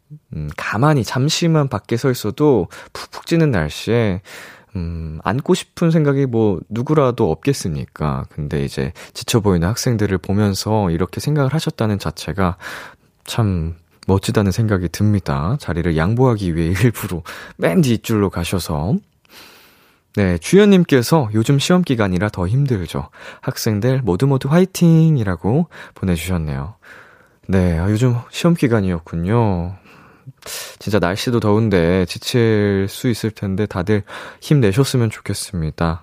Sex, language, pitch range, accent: male, Korean, 90-140 Hz, native